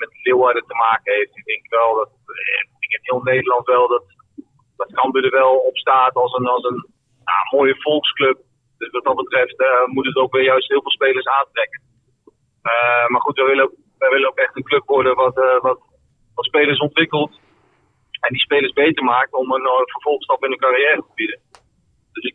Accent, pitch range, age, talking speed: Dutch, 130-170 Hz, 40-59, 205 wpm